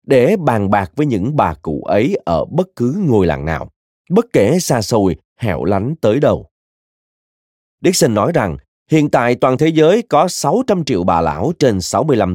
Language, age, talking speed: Vietnamese, 20-39, 180 wpm